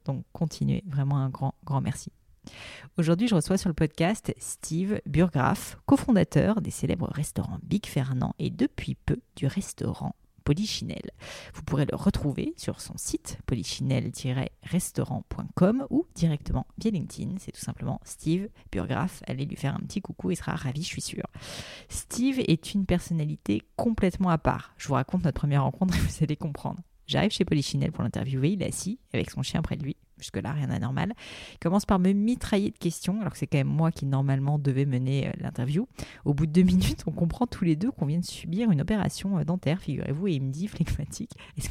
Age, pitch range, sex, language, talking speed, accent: 30-49, 140-185 Hz, female, French, 190 wpm, French